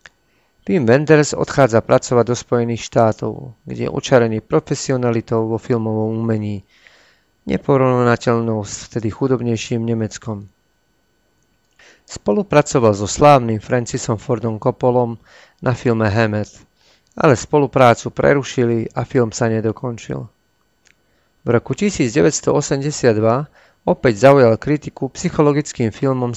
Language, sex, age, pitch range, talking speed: Slovak, male, 40-59, 110-135 Hz, 100 wpm